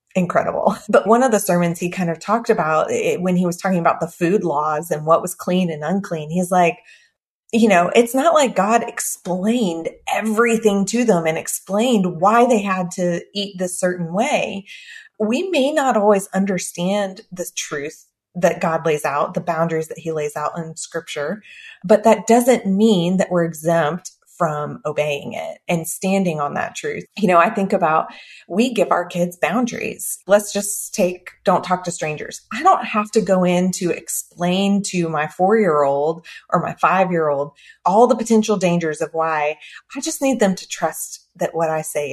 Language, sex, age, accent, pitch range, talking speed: English, female, 30-49, American, 165-215 Hz, 185 wpm